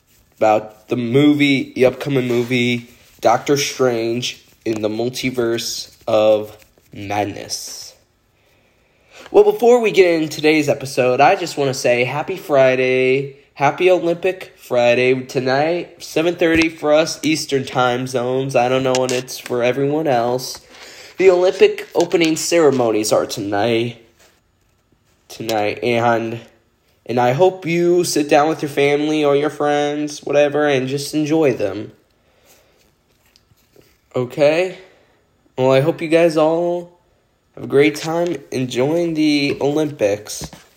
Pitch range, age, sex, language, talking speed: 120-160 Hz, 10-29, male, English, 125 wpm